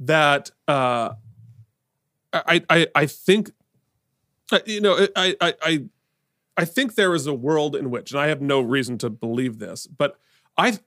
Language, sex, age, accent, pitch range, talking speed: English, male, 30-49, American, 135-180 Hz, 155 wpm